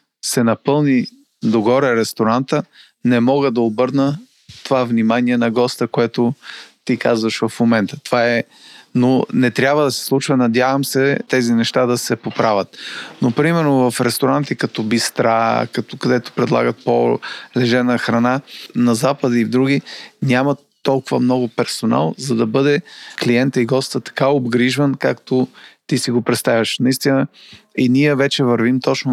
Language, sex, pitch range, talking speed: Bulgarian, male, 115-130 Hz, 145 wpm